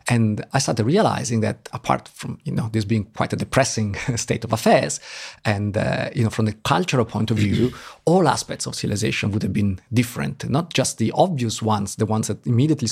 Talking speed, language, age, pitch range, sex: 205 wpm, Bulgarian, 40-59, 110-125 Hz, male